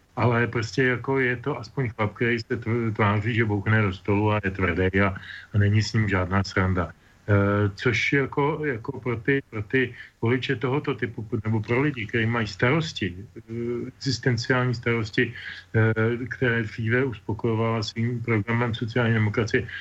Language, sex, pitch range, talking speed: Slovak, male, 110-130 Hz, 160 wpm